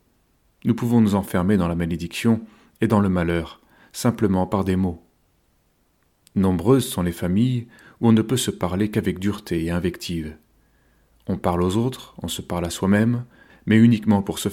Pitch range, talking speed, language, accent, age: 85-110 Hz, 175 wpm, French, French, 40-59